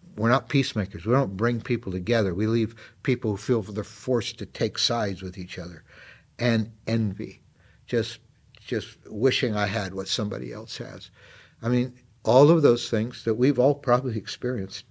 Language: English